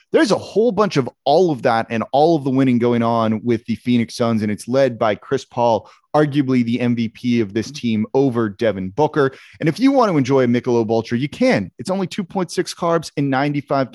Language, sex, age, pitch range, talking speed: English, male, 30-49, 115-160 Hz, 220 wpm